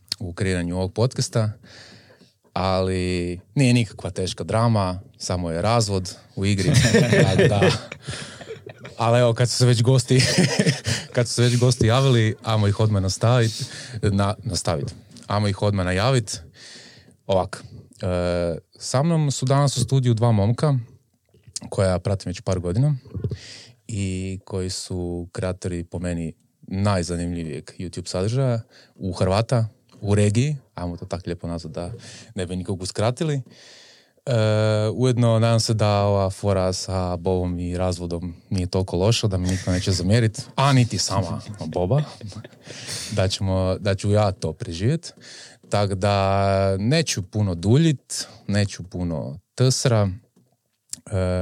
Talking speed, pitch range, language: 135 wpm, 95-120 Hz, Croatian